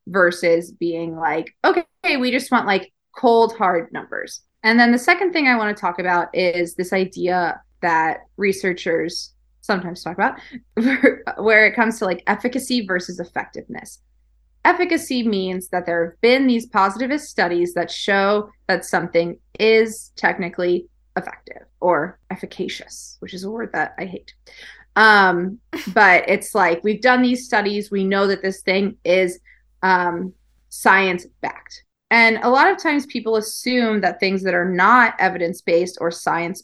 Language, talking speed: English, 155 wpm